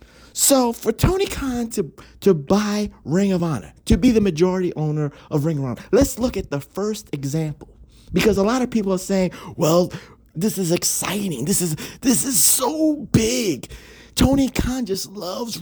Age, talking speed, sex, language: 30-49, 175 wpm, male, English